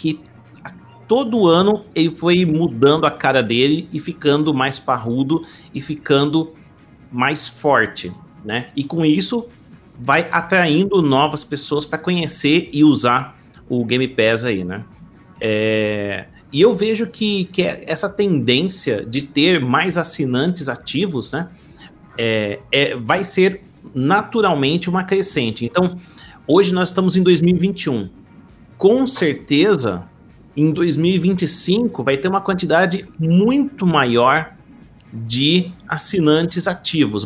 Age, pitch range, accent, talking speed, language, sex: 40-59, 130-180 Hz, Brazilian, 115 wpm, Portuguese, male